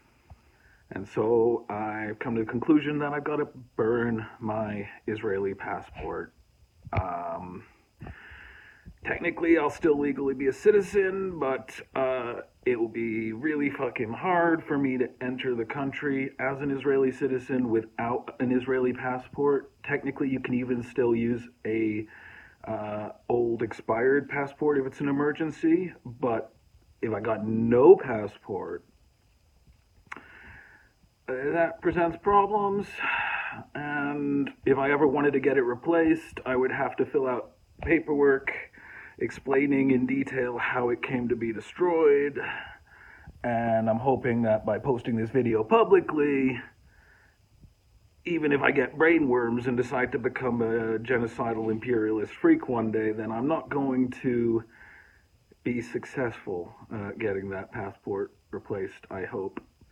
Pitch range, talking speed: 115-145 Hz, 130 wpm